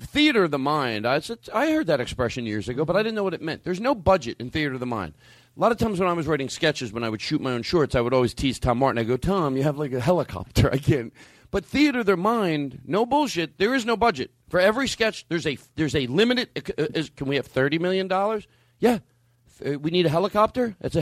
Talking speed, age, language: 250 wpm, 40-59, English